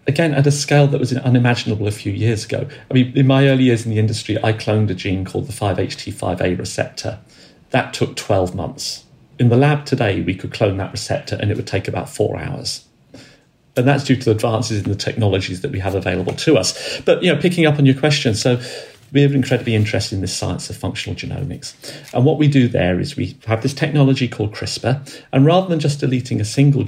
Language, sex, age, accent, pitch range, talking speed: English, male, 40-59, British, 110-140 Hz, 225 wpm